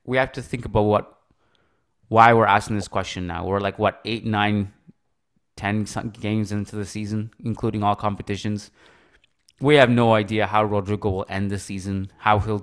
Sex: male